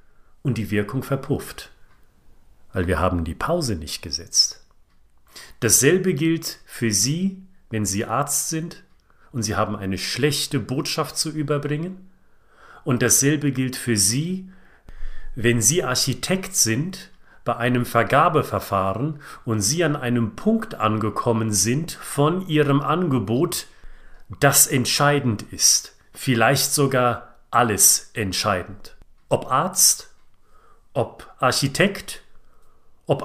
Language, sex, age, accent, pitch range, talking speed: German, male, 40-59, German, 115-155 Hz, 110 wpm